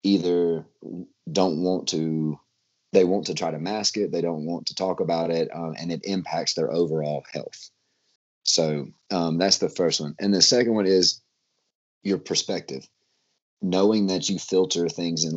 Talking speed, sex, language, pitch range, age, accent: 170 wpm, male, English, 80-85 Hz, 30-49, American